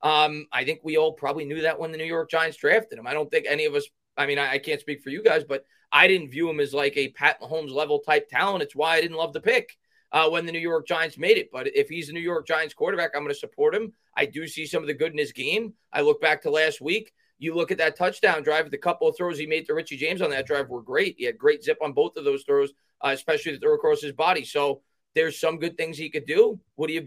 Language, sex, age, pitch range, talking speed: English, male, 30-49, 160-215 Hz, 295 wpm